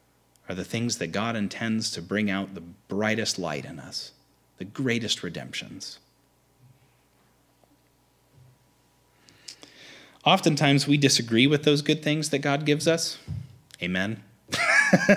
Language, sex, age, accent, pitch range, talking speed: English, male, 30-49, American, 95-140 Hz, 115 wpm